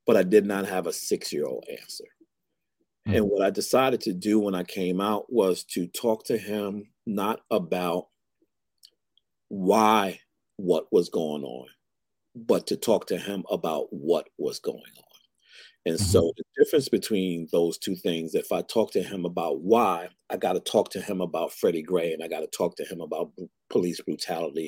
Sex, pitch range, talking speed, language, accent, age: male, 105-125 Hz, 175 wpm, English, American, 40-59